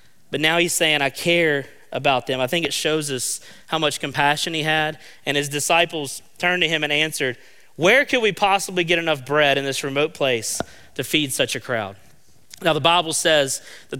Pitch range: 140-170 Hz